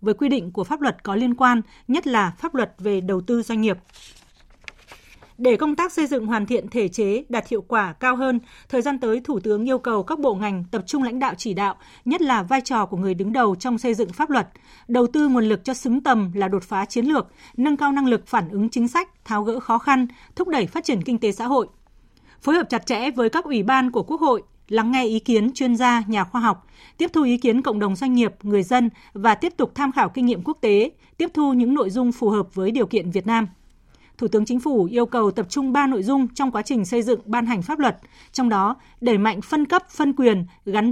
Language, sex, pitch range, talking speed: Vietnamese, female, 215-270 Hz, 255 wpm